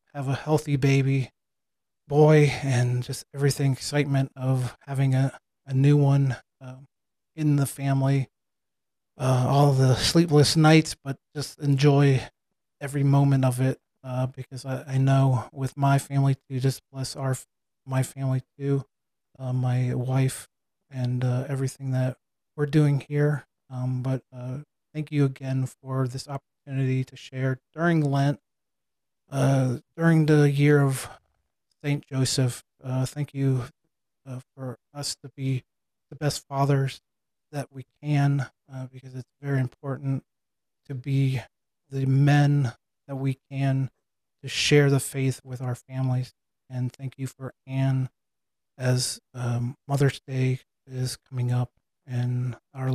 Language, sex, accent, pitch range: English, male, American, 130-140 Hz